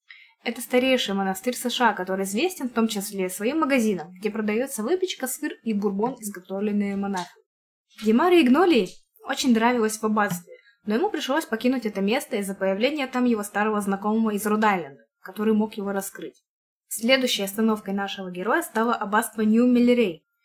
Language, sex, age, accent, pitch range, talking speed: Russian, female, 20-39, native, 205-255 Hz, 145 wpm